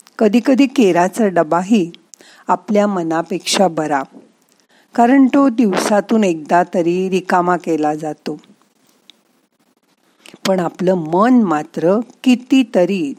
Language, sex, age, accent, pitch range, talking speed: Marathi, female, 50-69, native, 170-240 Hz, 90 wpm